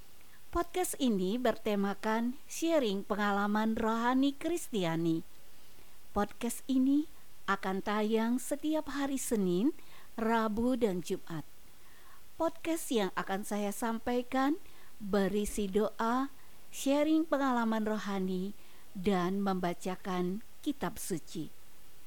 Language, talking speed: Indonesian, 85 wpm